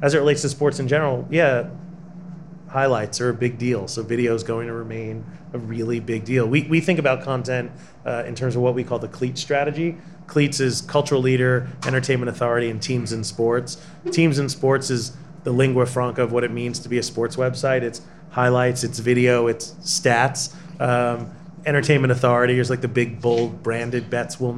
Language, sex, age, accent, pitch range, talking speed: English, male, 30-49, American, 120-140 Hz, 200 wpm